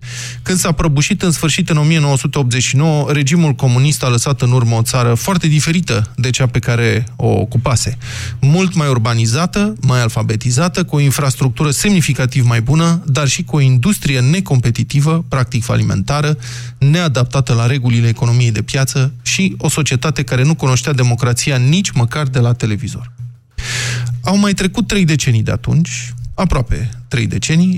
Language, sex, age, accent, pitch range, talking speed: Romanian, male, 20-39, native, 120-160 Hz, 150 wpm